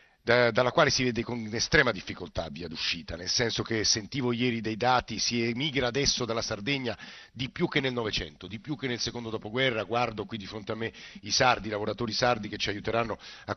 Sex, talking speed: male, 210 wpm